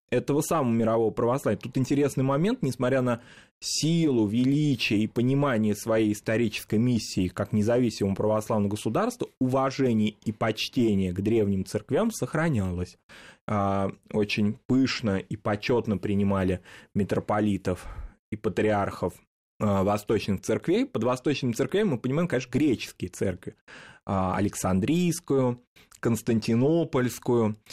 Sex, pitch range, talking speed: male, 100-130 Hz, 100 wpm